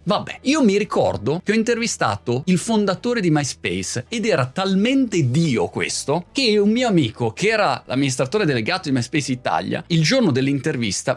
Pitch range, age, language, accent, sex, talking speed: 125-200 Hz, 30-49, Italian, native, male, 160 wpm